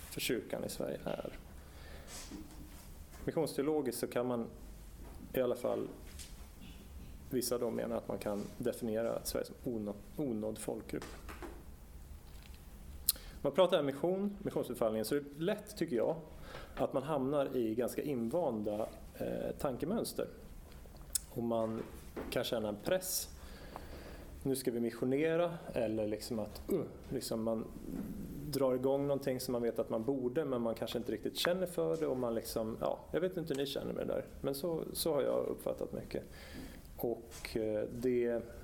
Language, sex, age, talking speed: Swedish, male, 30-49, 150 wpm